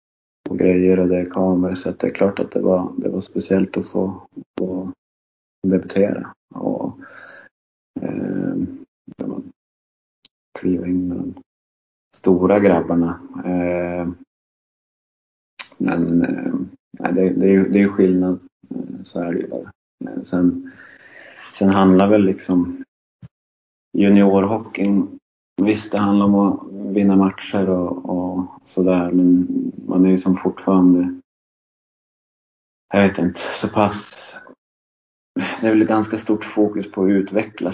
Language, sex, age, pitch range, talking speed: Swedish, male, 30-49, 90-100 Hz, 125 wpm